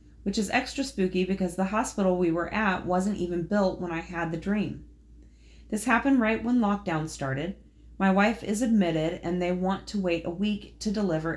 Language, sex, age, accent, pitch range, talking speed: English, female, 30-49, American, 165-210 Hz, 195 wpm